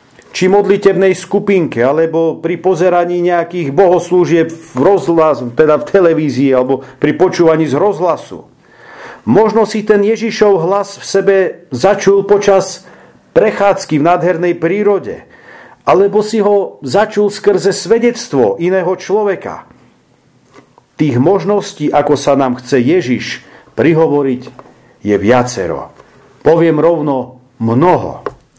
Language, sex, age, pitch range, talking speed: Slovak, male, 50-69, 150-200 Hz, 110 wpm